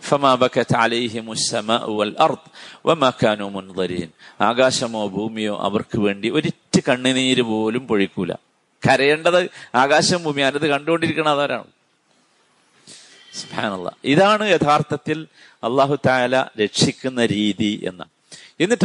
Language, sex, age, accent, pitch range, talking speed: Malayalam, male, 50-69, native, 115-185 Hz, 60 wpm